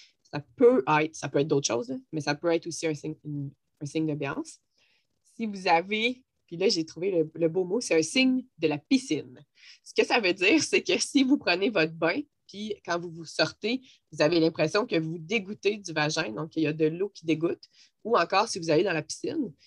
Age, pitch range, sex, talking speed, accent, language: 20-39, 155-210 Hz, female, 230 wpm, Canadian, French